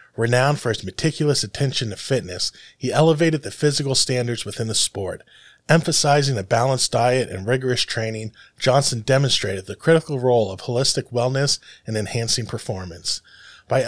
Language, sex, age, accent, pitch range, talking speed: English, male, 20-39, American, 105-135 Hz, 145 wpm